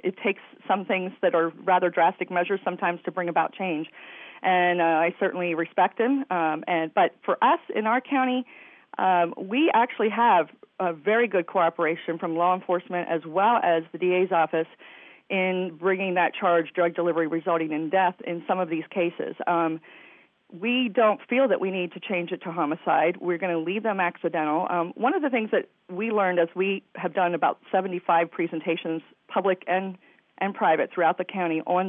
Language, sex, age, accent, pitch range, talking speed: English, female, 40-59, American, 170-200 Hz, 190 wpm